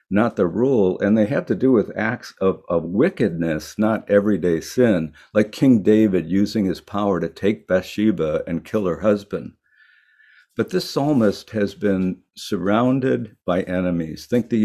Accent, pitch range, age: American, 85-110 Hz, 60-79